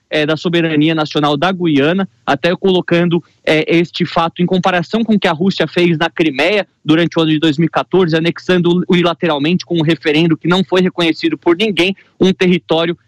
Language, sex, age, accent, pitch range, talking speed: Portuguese, male, 20-39, Brazilian, 165-185 Hz, 175 wpm